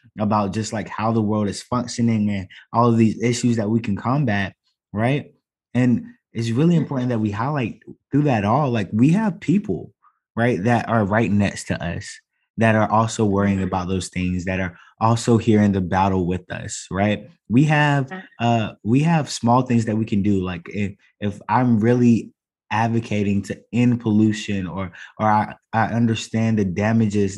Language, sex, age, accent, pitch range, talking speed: English, male, 20-39, American, 100-120 Hz, 180 wpm